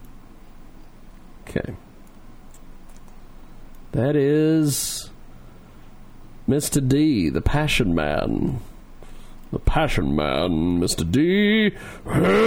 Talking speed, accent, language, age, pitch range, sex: 65 wpm, American, English, 40-59, 135-220 Hz, male